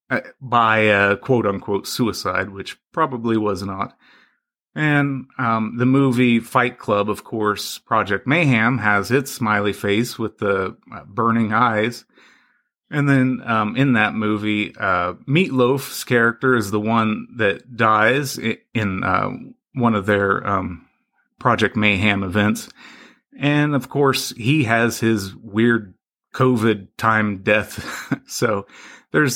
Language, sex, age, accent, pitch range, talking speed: English, male, 30-49, American, 105-130 Hz, 125 wpm